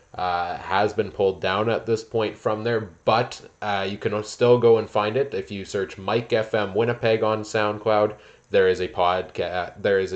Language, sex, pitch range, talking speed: English, male, 95-130 Hz, 195 wpm